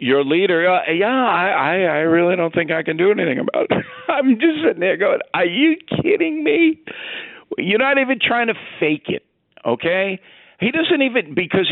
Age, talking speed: 50-69, 190 wpm